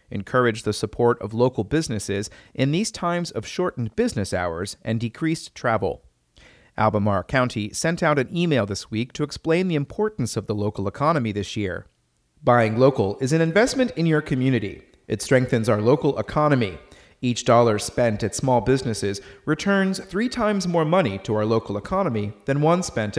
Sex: male